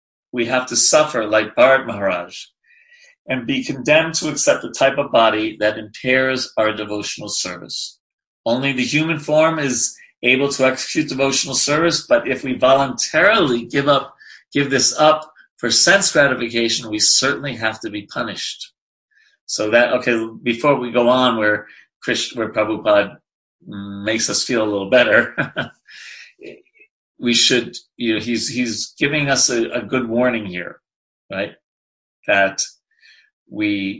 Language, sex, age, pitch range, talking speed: English, male, 40-59, 110-150 Hz, 145 wpm